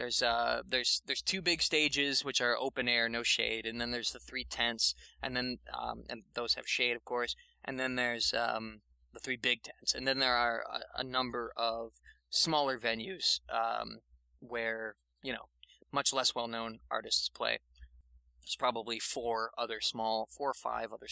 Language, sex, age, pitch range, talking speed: English, male, 20-39, 110-135 Hz, 185 wpm